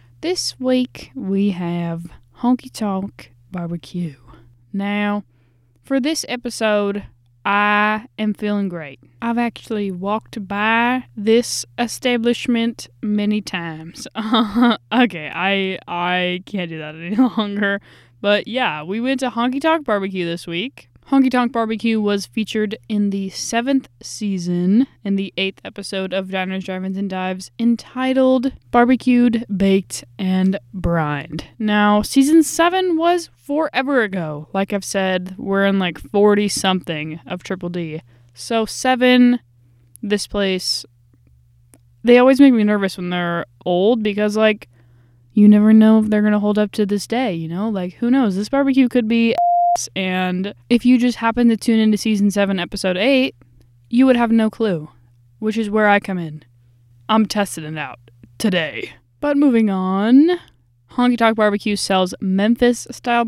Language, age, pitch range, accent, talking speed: English, 10-29, 175-230 Hz, American, 140 wpm